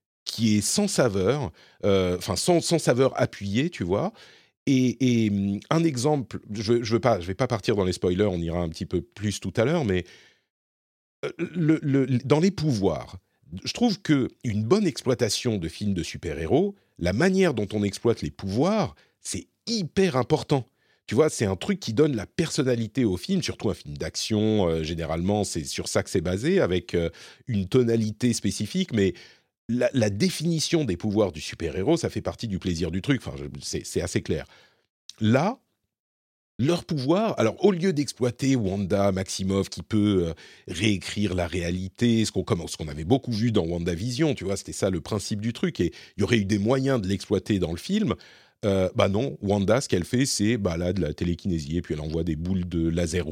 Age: 40-59